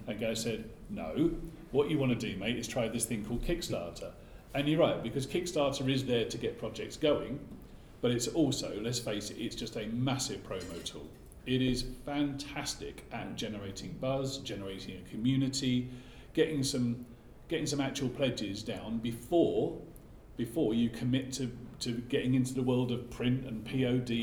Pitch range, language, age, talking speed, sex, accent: 110-135 Hz, English, 40-59, 170 wpm, male, British